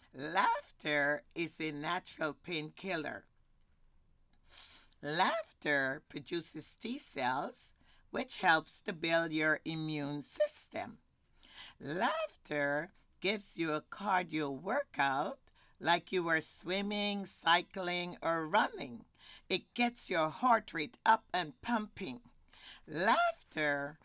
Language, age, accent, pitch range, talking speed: English, 50-69, American, 150-200 Hz, 95 wpm